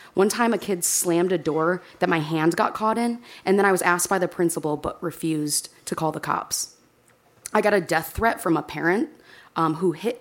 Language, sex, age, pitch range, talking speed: English, female, 20-39, 155-195 Hz, 225 wpm